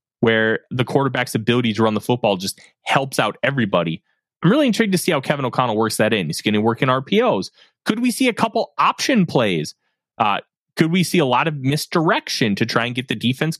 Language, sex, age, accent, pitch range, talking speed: English, male, 20-39, American, 125-195 Hz, 220 wpm